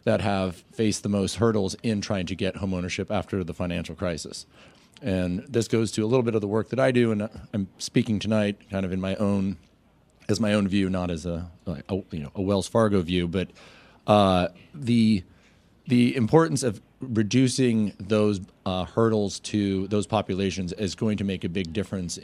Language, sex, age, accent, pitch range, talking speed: English, male, 40-59, American, 95-110 Hz, 195 wpm